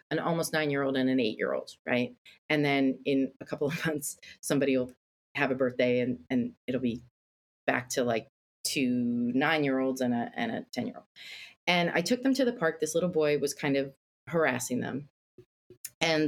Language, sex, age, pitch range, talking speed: English, female, 30-49, 135-175 Hz, 180 wpm